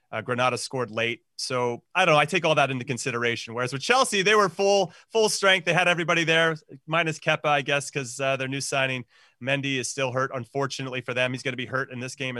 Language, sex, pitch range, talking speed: English, male, 130-160 Hz, 235 wpm